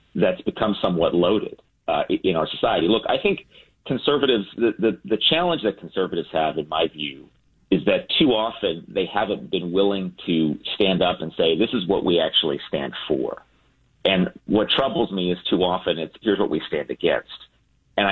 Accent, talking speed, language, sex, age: American, 185 wpm, English, male, 40-59